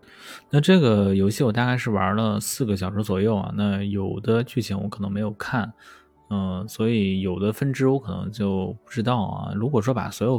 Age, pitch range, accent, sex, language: 20-39, 100-120 Hz, native, male, Chinese